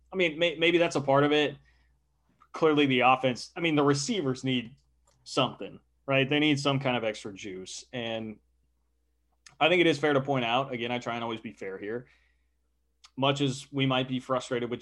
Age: 20-39